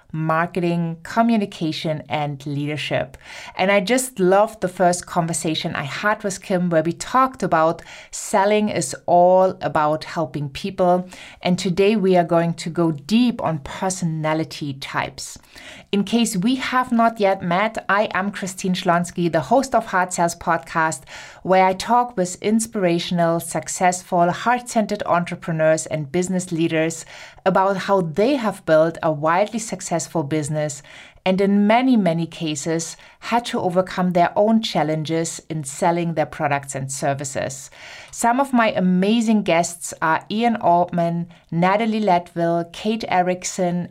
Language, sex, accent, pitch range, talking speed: English, female, German, 165-200 Hz, 140 wpm